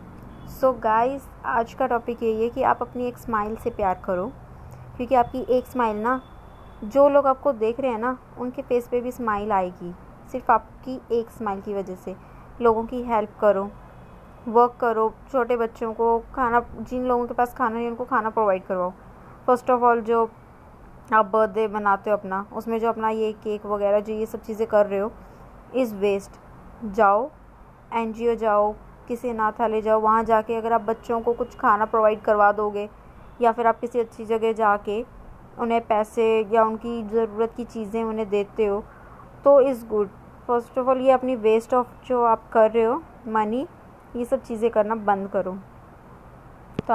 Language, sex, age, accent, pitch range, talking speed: Hindi, female, 20-39, native, 215-245 Hz, 185 wpm